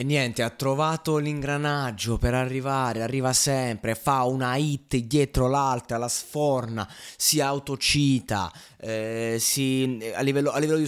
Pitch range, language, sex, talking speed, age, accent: 115-145 Hz, Italian, male, 140 wpm, 20-39, native